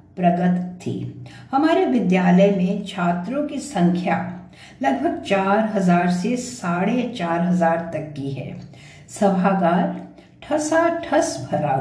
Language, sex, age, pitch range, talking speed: English, female, 60-79, 160-215 Hz, 115 wpm